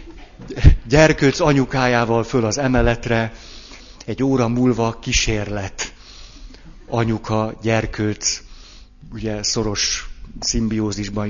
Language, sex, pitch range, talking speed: Hungarian, male, 115-145 Hz, 75 wpm